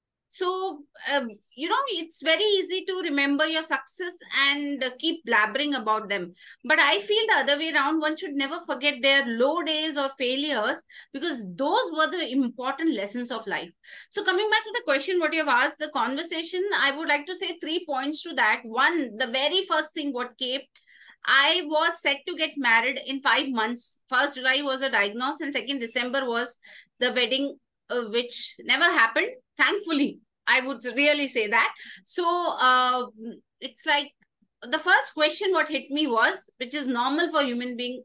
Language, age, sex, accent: English, 30-49, female, Indian